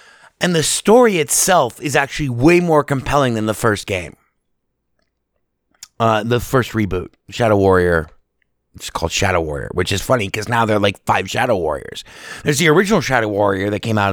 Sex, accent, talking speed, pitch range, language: male, American, 180 wpm, 100-150 Hz, English